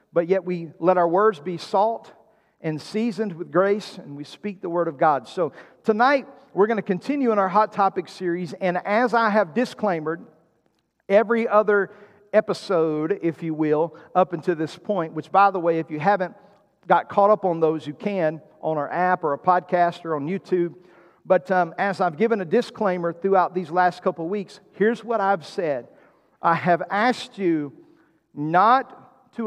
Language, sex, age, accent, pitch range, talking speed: English, male, 50-69, American, 170-210 Hz, 185 wpm